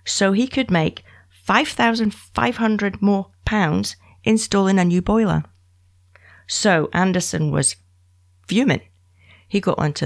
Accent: British